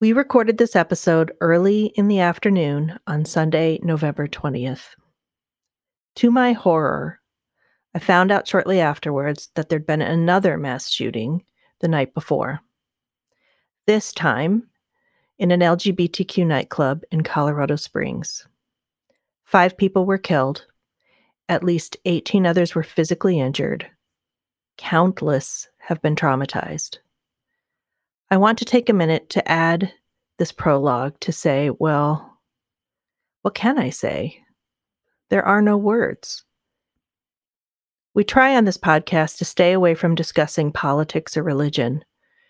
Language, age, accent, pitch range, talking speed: English, 40-59, American, 155-200 Hz, 125 wpm